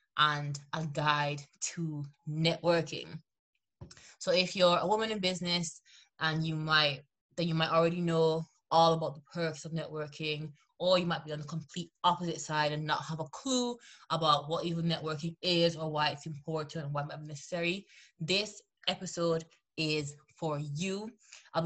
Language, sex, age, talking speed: English, female, 20-39, 170 wpm